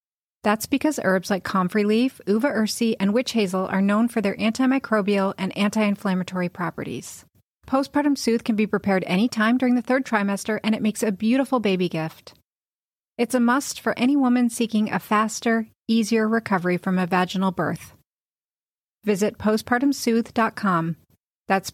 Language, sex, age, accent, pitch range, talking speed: English, female, 30-49, American, 195-235 Hz, 150 wpm